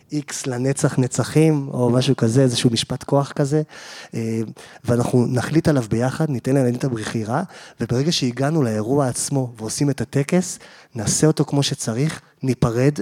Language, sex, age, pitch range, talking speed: Hebrew, male, 30-49, 120-145 Hz, 140 wpm